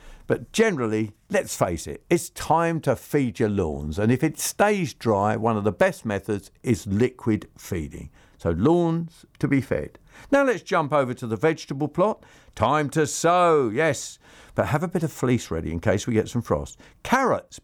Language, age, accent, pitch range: English, 50-69, British, 110-175 Hz